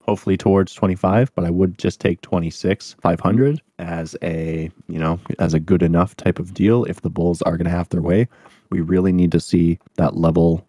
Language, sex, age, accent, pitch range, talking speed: English, male, 20-39, American, 80-95 Hz, 210 wpm